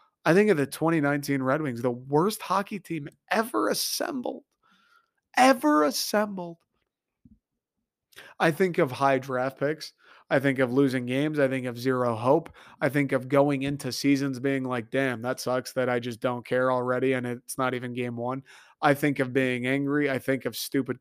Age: 30-49